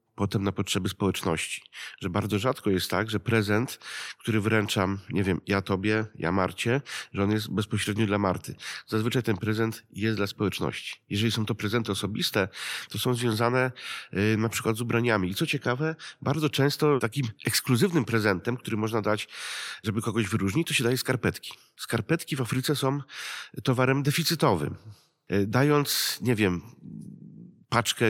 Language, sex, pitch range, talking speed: Polish, male, 100-125 Hz, 150 wpm